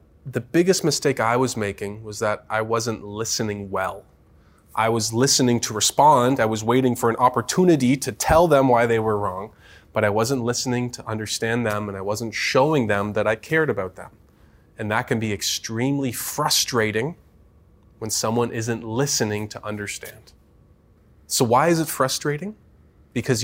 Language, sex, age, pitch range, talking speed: English, male, 20-39, 110-155 Hz, 165 wpm